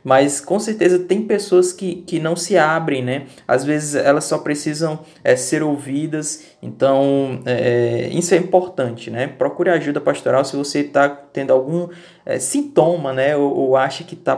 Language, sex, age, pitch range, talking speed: Portuguese, male, 20-39, 130-175 Hz, 160 wpm